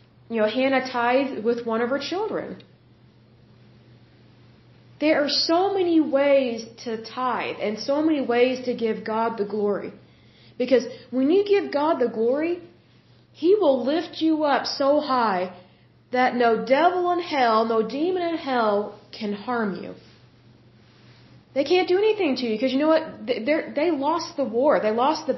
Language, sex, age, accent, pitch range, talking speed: Hindi, female, 30-49, American, 220-310 Hz, 170 wpm